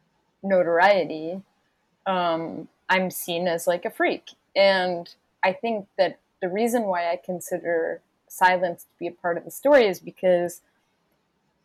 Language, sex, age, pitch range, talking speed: English, female, 20-39, 165-190 Hz, 140 wpm